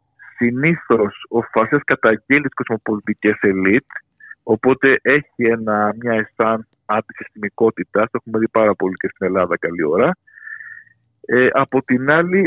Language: Greek